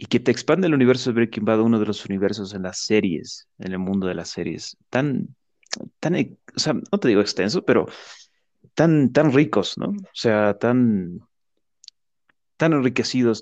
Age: 30-49